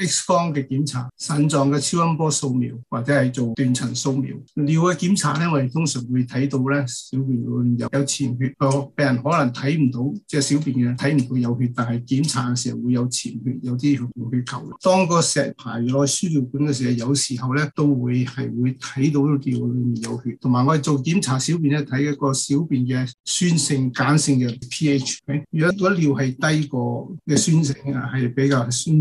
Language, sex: Chinese, male